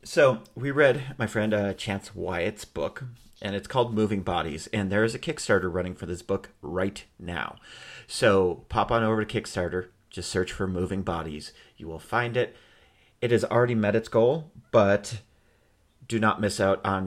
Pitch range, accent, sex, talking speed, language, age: 90-110 Hz, American, male, 185 wpm, English, 30-49